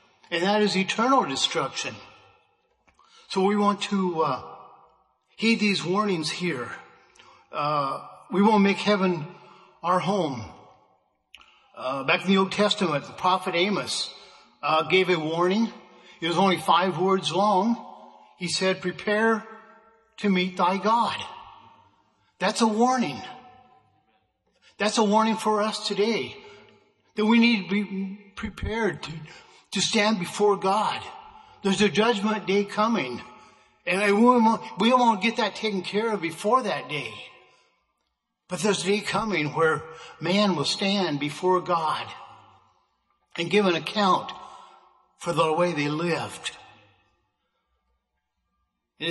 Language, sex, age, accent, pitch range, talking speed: English, male, 50-69, American, 175-215 Hz, 125 wpm